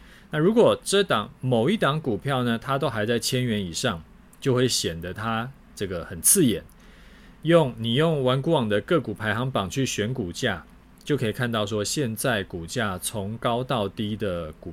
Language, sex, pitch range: Chinese, male, 100-130 Hz